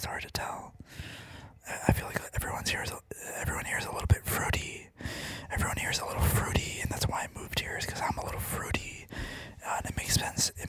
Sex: male